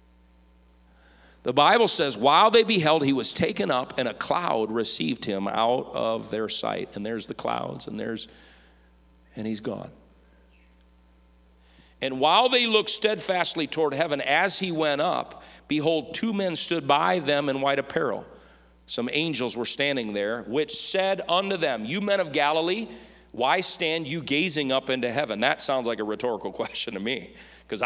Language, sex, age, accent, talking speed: English, male, 40-59, American, 165 wpm